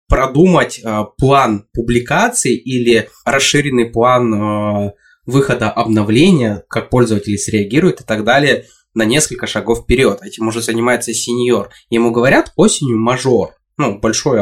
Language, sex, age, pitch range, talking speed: Russian, male, 20-39, 115-155 Hz, 115 wpm